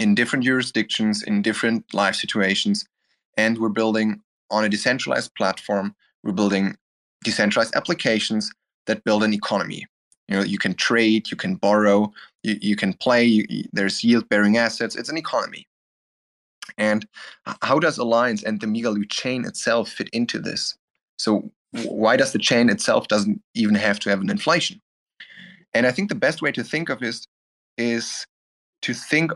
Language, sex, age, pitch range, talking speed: English, male, 20-39, 105-150 Hz, 160 wpm